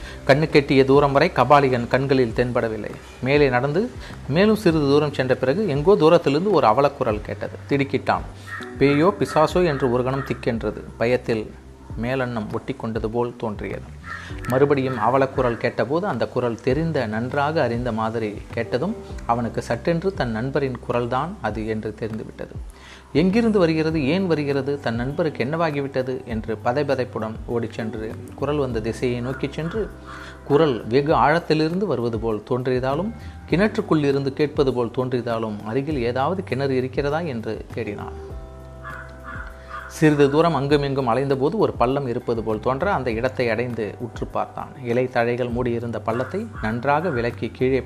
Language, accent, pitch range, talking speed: Tamil, native, 110-140 Hz, 130 wpm